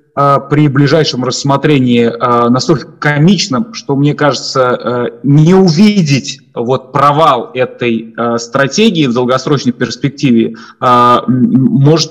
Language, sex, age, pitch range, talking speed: Russian, male, 20-39, 115-140 Hz, 100 wpm